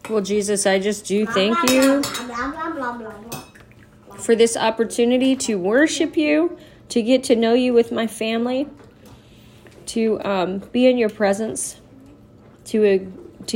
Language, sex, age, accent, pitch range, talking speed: English, female, 30-49, American, 180-225 Hz, 125 wpm